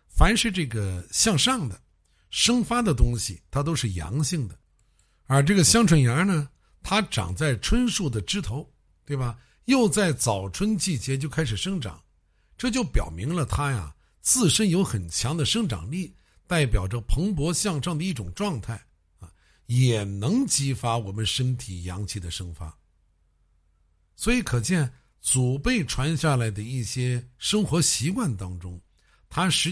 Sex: male